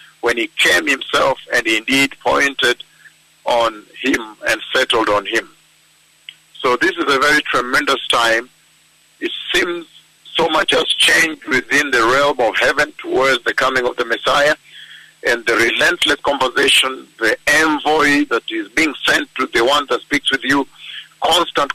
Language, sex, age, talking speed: English, male, 50-69, 150 wpm